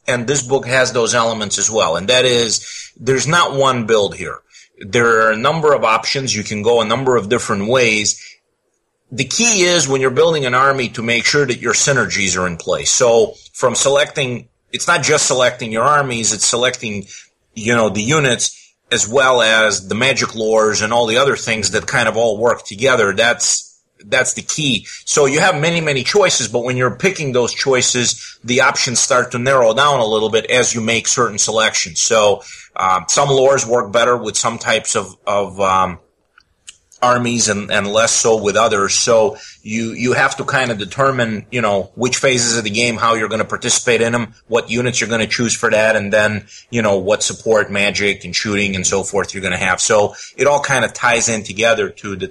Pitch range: 105-130 Hz